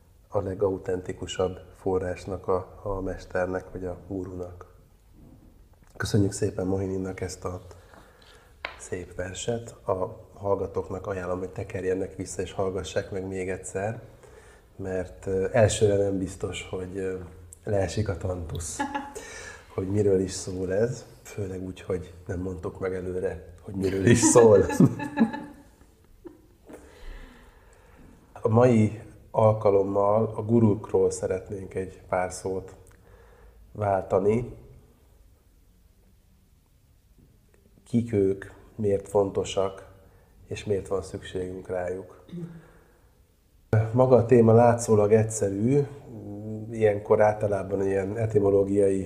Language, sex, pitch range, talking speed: Hungarian, male, 95-110 Hz, 95 wpm